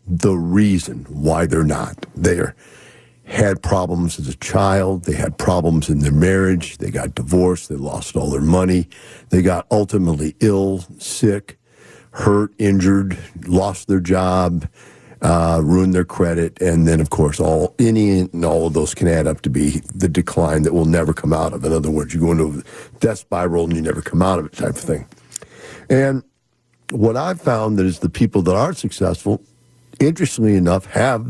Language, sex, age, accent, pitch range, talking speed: English, male, 60-79, American, 80-100 Hz, 185 wpm